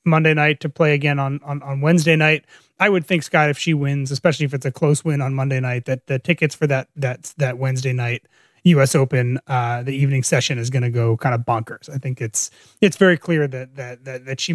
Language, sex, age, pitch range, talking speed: English, male, 30-49, 140-170 Hz, 245 wpm